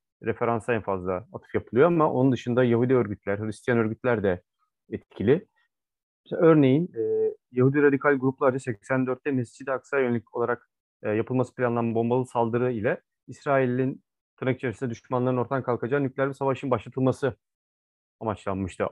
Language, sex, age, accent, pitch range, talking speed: Turkish, male, 30-49, native, 115-140 Hz, 125 wpm